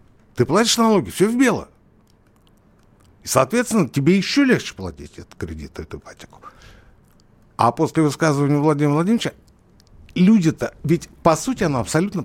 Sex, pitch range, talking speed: male, 105-165 Hz, 130 wpm